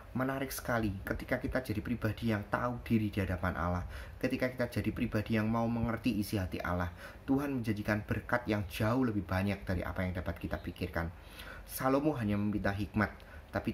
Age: 30-49